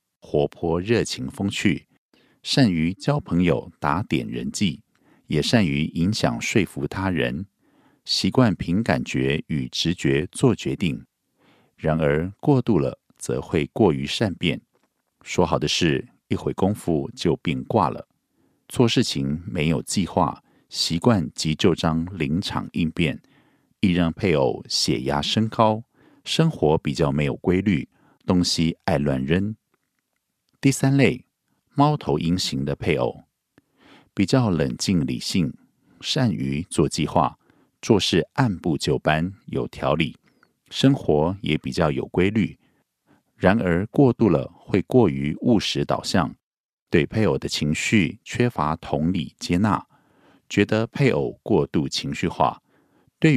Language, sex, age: Korean, male, 50-69